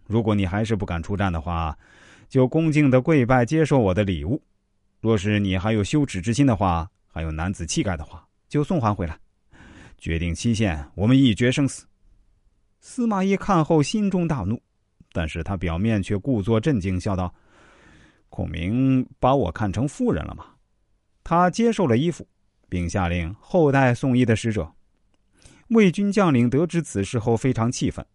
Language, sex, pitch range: Chinese, male, 90-135 Hz